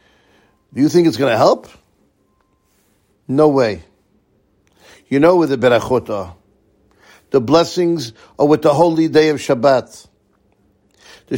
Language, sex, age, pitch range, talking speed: English, male, 60-79, 105-165 Hz, 130 wpm